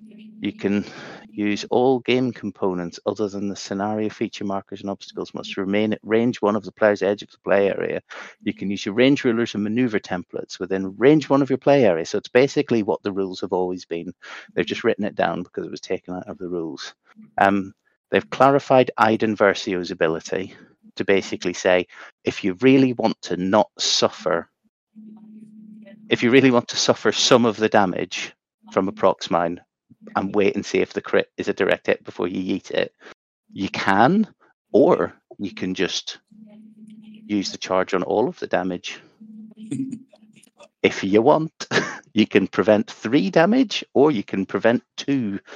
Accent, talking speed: British, 180 wpm